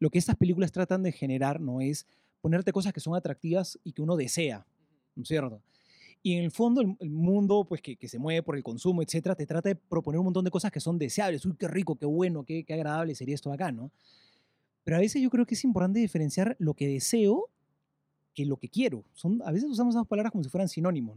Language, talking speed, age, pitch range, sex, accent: Spanish, 245 wpm, 30-49, 140-190 Hz, male, Argentinian